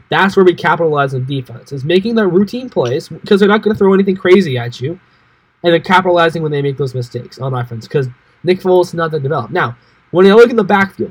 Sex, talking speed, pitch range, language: male, 245 wpm, 140-190 Hz, English